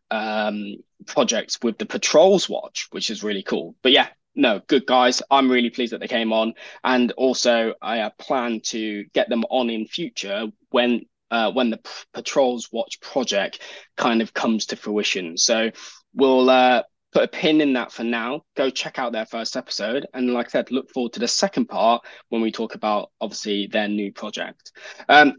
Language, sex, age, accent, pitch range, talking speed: English, male, 10-29, British, 115-160 Hz, 190 wpm